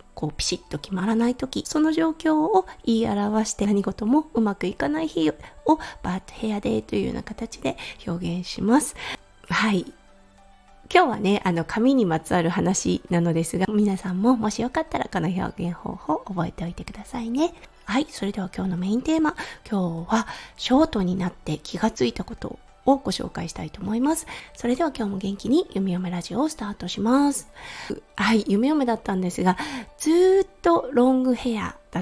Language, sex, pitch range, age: Japanese, female, 185-260 Hz, 20-39